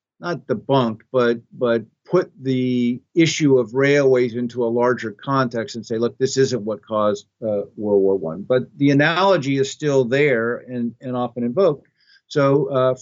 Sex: male